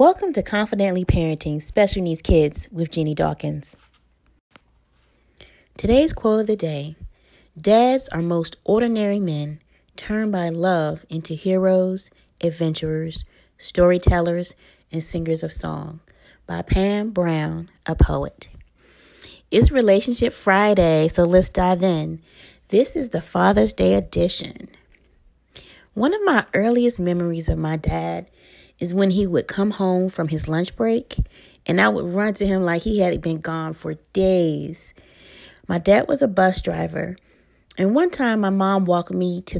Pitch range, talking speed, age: 160-195 Hz, 140 wpm, 30-49